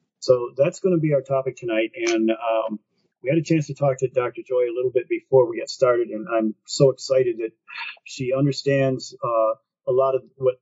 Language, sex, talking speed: English, male, 215 wpm